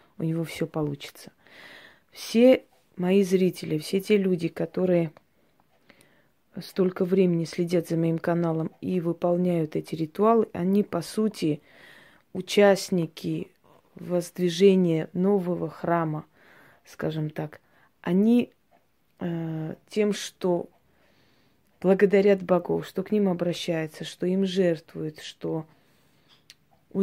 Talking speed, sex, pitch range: 100 wpm, female, 170-200 Hz